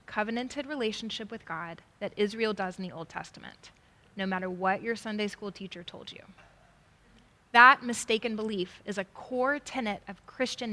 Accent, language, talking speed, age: American, English, 160 wpm, 10-29